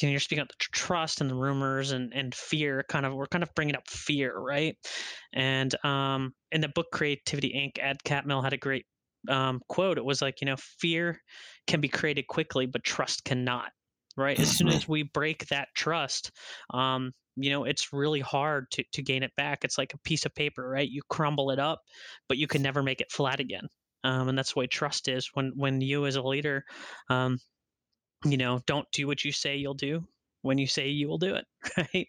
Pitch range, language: 135-155 Hz, English